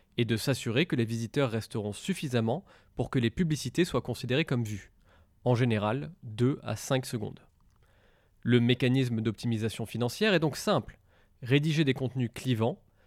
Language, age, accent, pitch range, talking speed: French, 20-39, French, 115-150 Hz, 150 wpm